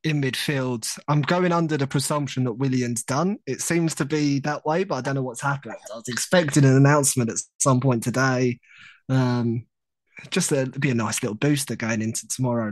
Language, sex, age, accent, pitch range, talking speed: English, male, 20-39, British, 115-140 Hz, 200 wpm